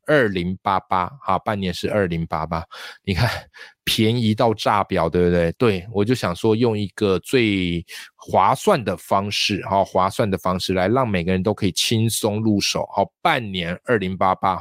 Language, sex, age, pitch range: Chinese, male, 20-39, 90-120 Hz